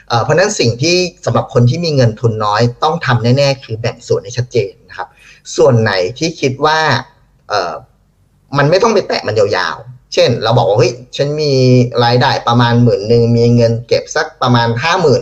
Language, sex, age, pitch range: Thai, male, 30-49, 120-140 Hz